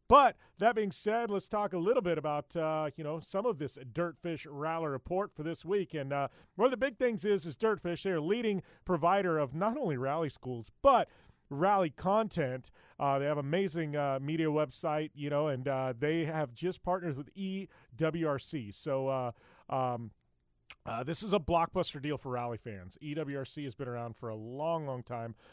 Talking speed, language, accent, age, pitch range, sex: 195 wpm, English, American, 40-59, 130-170 Hz, male